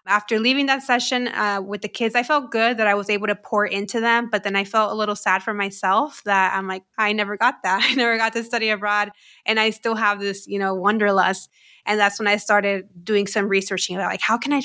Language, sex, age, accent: English, female, 20-39, American